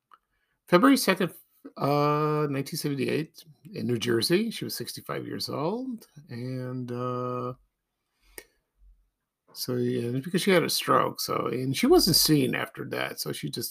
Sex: male